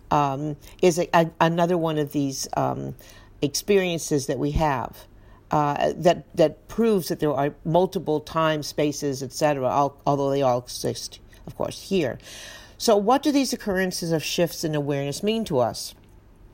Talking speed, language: 155 wpm, English